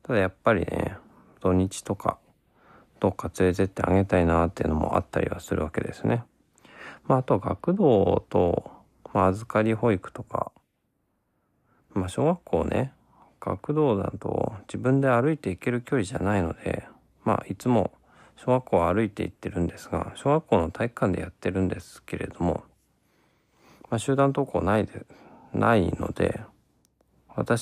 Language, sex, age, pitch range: Japanese, male, 40-59, 85-125 Hz